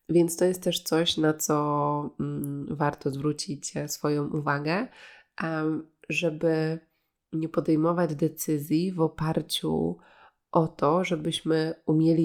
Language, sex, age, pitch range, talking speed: Polish, female, 20-39, 145-165 Hz, 105 wpm